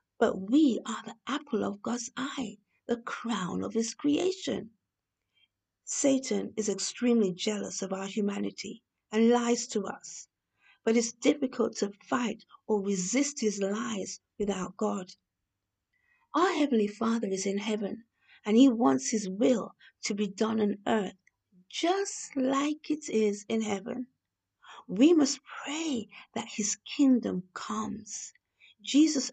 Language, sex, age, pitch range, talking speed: English, female, 50-69, 210-270 Hz, 135 wpm